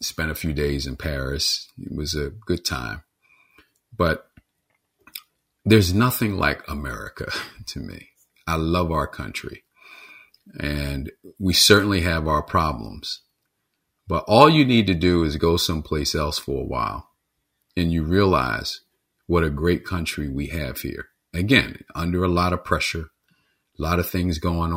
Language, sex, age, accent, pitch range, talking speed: English, male, 40-59, American, 75-95 Hz, 150 wpm